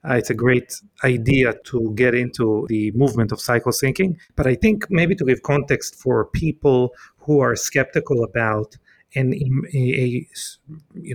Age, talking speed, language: 40-59, 155 wpm, English